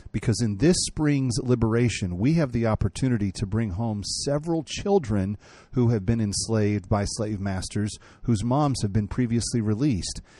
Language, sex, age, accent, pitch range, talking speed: English, male, 40-59, American, 100-125 Hz, 155 wpm